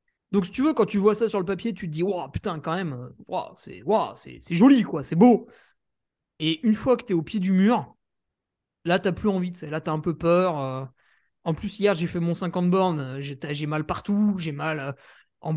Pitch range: 165-215 Hz